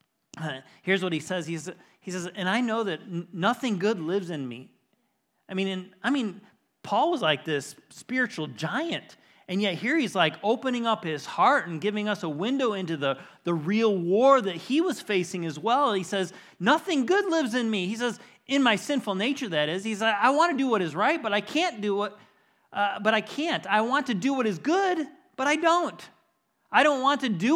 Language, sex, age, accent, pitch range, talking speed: English, male, 30-49, American, 190-275 Hz, 220 wpm